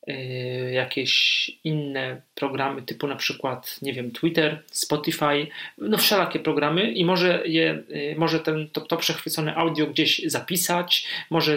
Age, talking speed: 40-59, 130 wpm